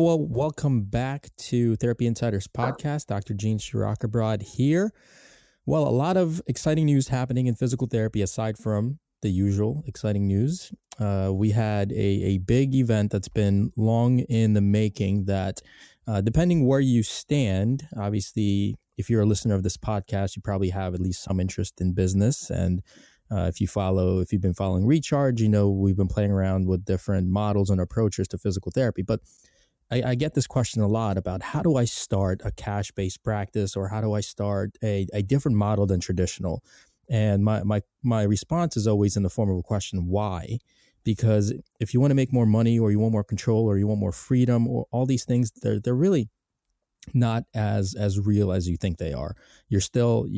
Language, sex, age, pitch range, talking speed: English, male, 20-39, 100-120 Hz, 195 wpm